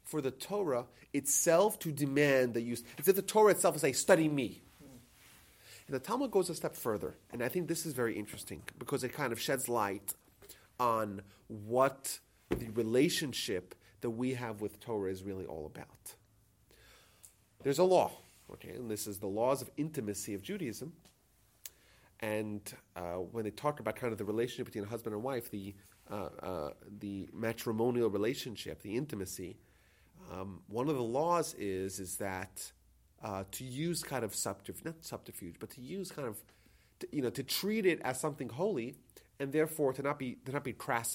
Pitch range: 100-135 Hz